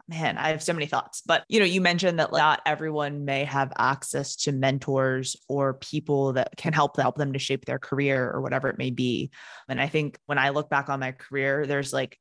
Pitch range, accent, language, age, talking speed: 135-160 Hz, American, English, 20-39, 235 wpm